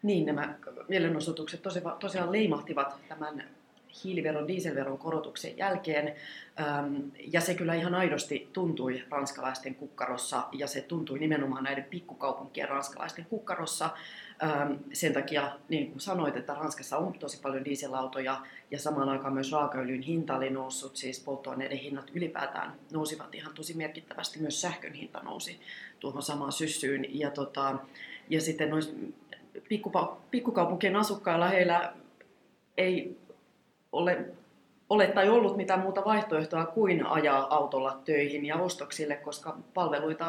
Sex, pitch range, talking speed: female, 140-165 Hz, 125 wpm